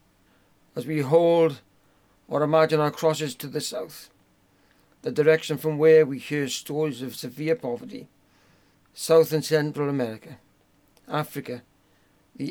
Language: English